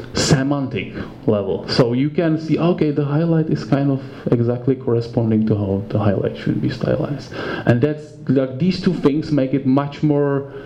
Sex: male